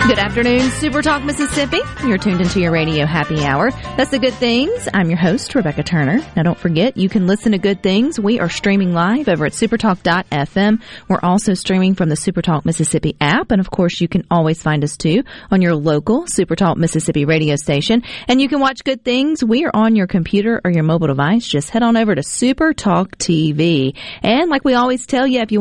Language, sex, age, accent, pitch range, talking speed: English, female, 40-59, American, 160-225 Hz, 220 wpm